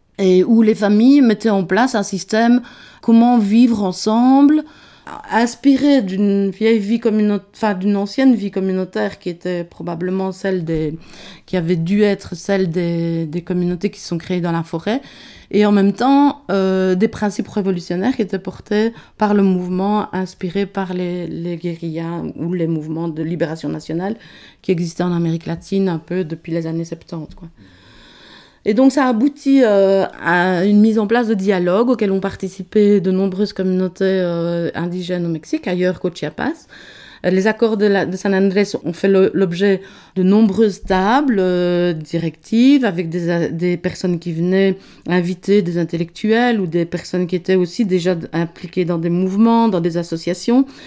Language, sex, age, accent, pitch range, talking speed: French, female, 30-49, French, 175-215 Hz, 170 wpm